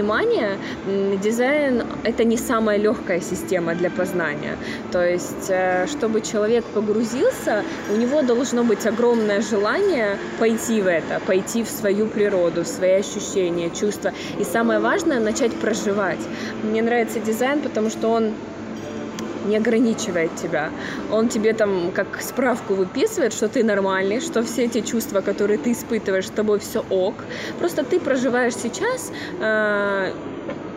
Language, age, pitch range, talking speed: Ukrainian, 20-39, 200-240 Hz, 135 wpm